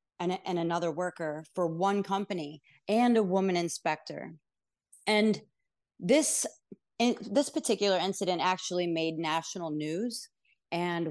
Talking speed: 115 wpm